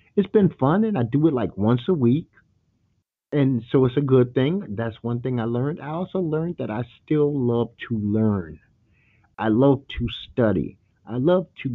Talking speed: 195 wpm